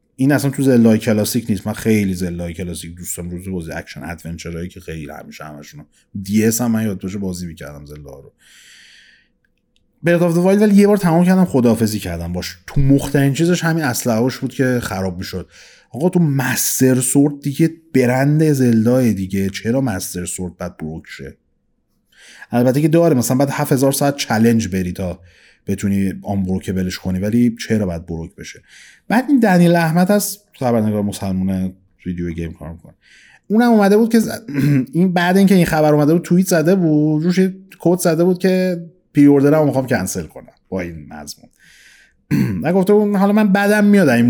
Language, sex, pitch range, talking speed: Persian, male, 95-155 Hz, 170 wpm